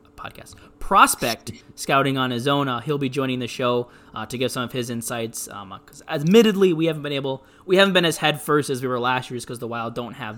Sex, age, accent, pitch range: male, 20-39, American, 115-135 Hz